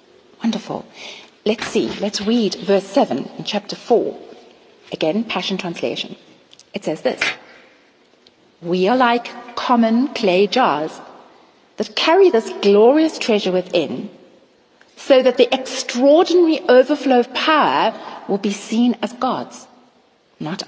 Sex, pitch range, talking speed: female, 195-260 Hz, 120 wpm